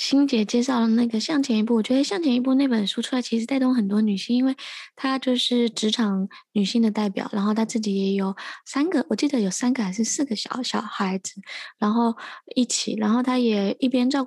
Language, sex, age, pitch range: Chinese, female, 20-39, 205-255 Hz